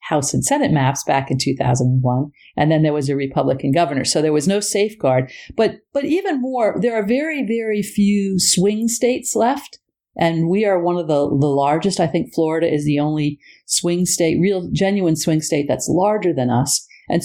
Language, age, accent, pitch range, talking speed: English, 50-69, American, 145-200 Hz, 195 wpm